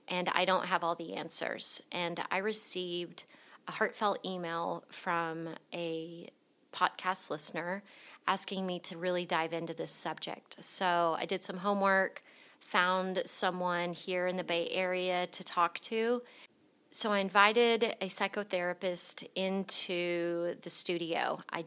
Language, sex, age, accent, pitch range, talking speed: English, female, 30-49, American, 175-195 Hz, 135 wpm